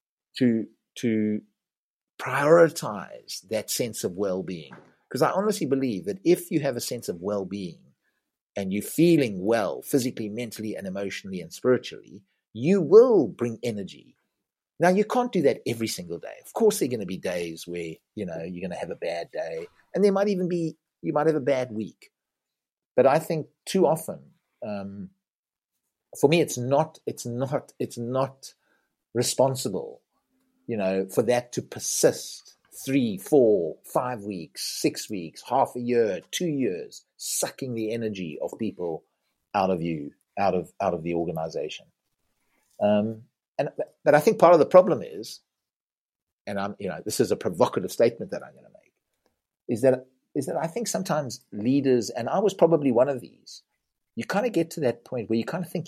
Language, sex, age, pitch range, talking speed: English, male, 50-69, 105-175 Hz, 180 wpm